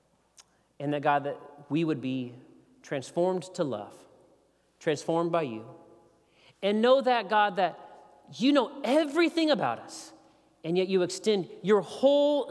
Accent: American